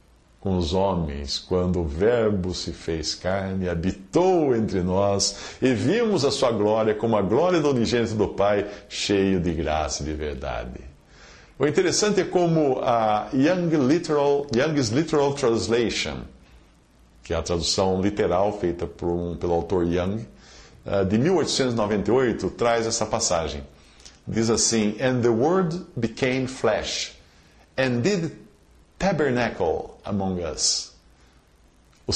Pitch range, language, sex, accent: 85-130 Hz, Portuguese, male, Brazilian